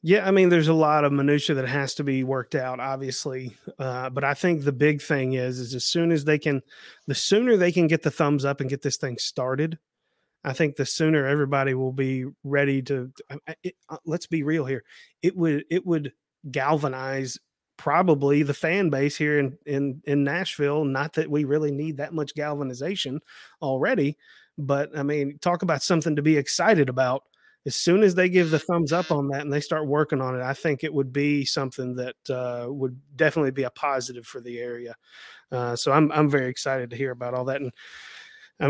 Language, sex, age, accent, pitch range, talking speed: English, male, 30-49, American, 130-155 Hz, 210 wpm